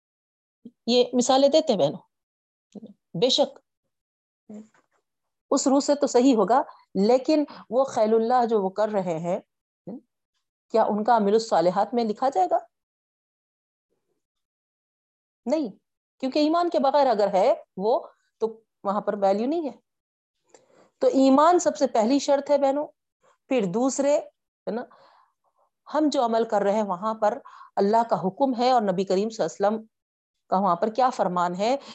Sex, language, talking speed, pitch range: female, Urdu, 145 wpm, 195-275 Hz